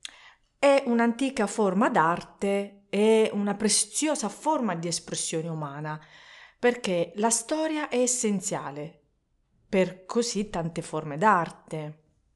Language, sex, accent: Italian, female, native